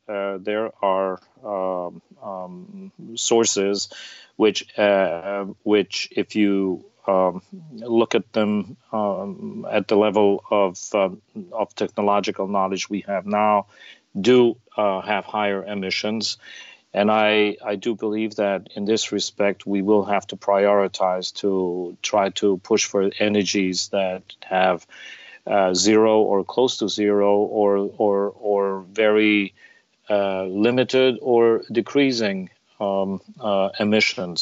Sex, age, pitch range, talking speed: male, 40-59, 95-110 Hz, 125 wpm